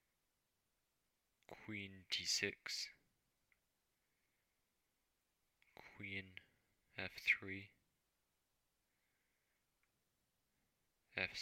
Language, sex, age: English, male, 20-39